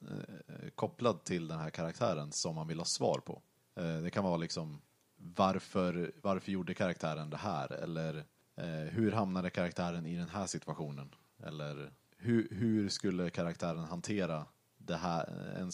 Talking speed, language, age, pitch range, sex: 135 wpm, Swedish, 30-49, 80-95 Hz, male